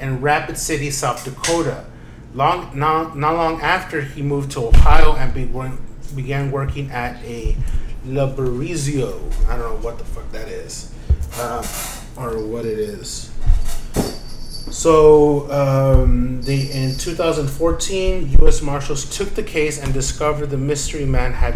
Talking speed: 140 wpm